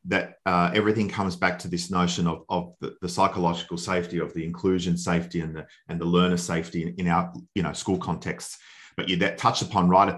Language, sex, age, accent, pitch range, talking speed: English, male, 30-49, Australian, 85-100 Hz, 220 wpm